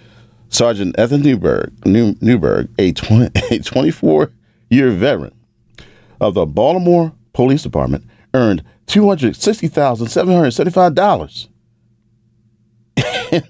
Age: 40-59